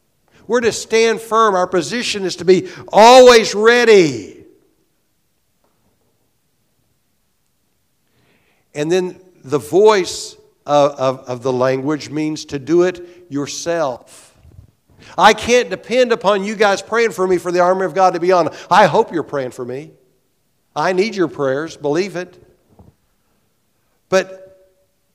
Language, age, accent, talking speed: English, 60-79, American, 130 wpm